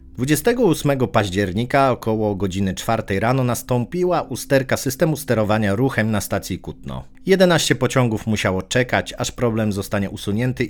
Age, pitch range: 40-59, 105-130 Hz